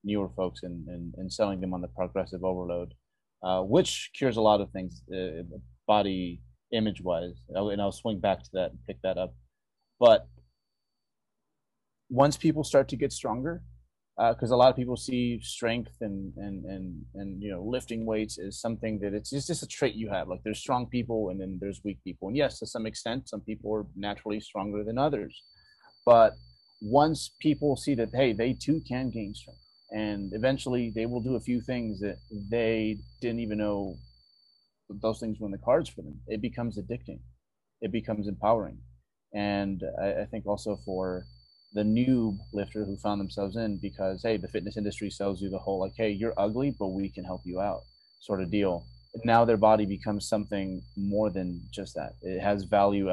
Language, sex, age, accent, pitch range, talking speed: English, male, 30-49, American, 95-115 Hz, 190 wpm